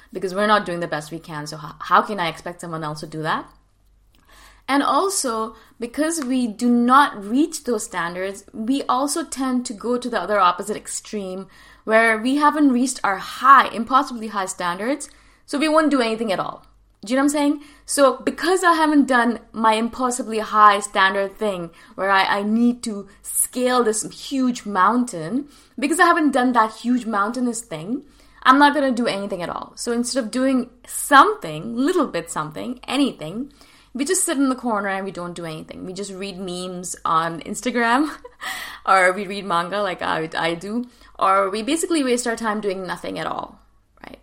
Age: 20-39